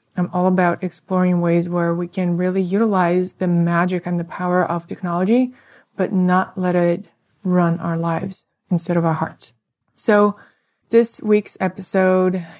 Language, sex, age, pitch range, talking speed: English, female, 20-39, 175-195 Hz, 150 wpm